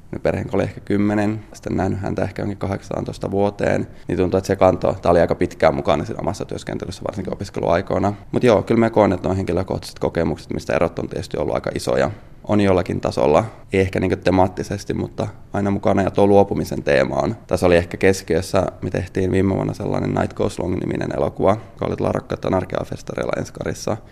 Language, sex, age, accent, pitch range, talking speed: Finnish, male, 20-39, native, 90-100 Hz, 185 wpm